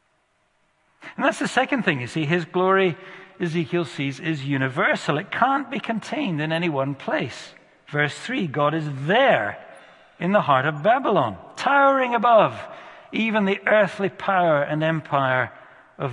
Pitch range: 140-195 Hz